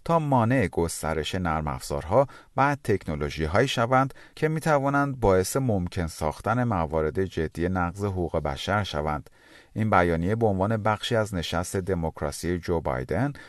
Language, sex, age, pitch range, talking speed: Persian, male, 40-59, 80-120 Hz, 135 wpm